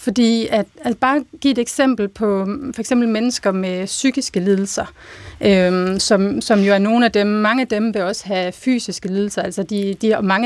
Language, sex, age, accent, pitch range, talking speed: Danish, female, 30-49, native, 195-240 Hz, 195 wpm